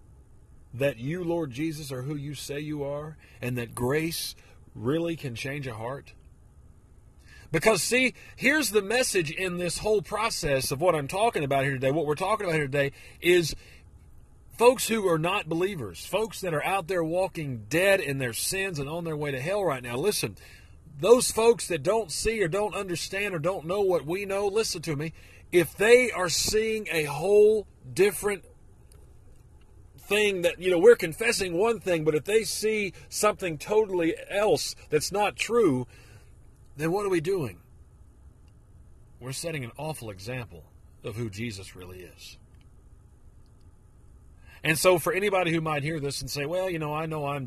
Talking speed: 175 wpm